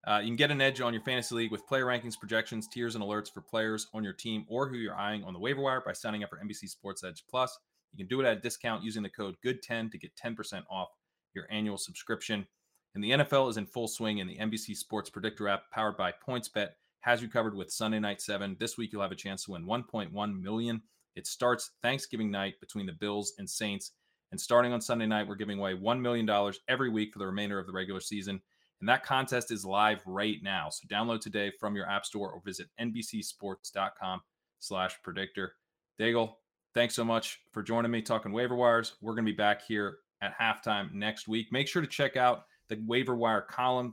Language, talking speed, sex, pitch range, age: English, 225 wpm, male, 100-115 Hz, 20-39